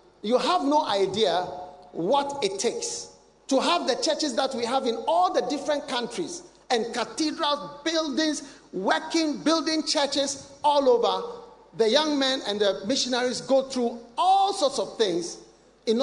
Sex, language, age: male, English, 50-69